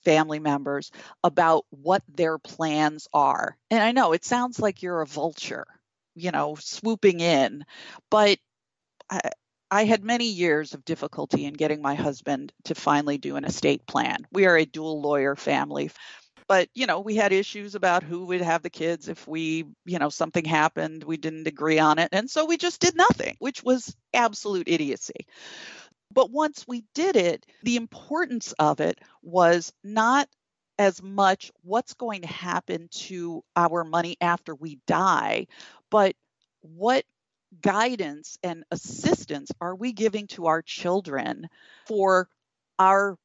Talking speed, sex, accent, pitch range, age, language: 155 wpm, female, American, 160-215 Hz, 40-59, English